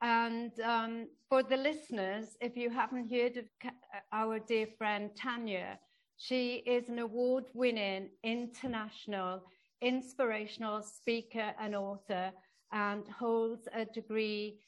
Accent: British